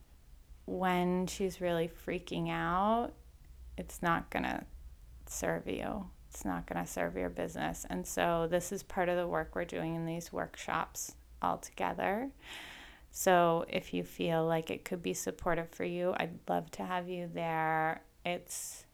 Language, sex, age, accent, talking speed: English, female, 20-39, American, 155 wpm